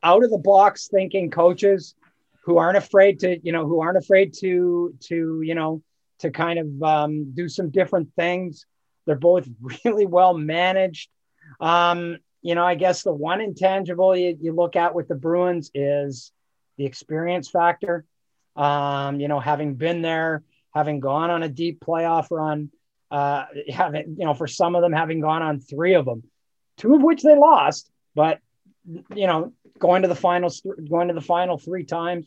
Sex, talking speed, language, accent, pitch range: male, 180 wpm, English, American, 150-180 Hz